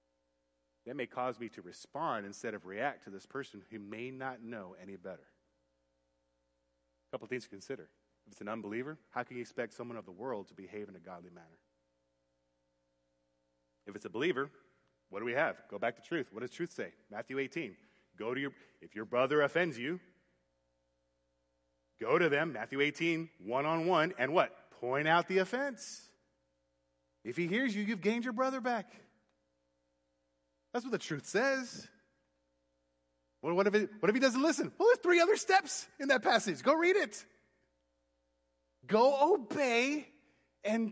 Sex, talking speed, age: male, 165 wpm, 30-49